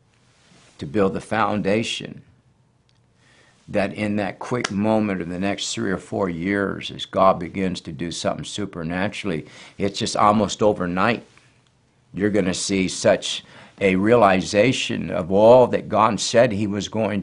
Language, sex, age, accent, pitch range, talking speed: English, male, 60-79, American, 95-120 Hz, 145 wpm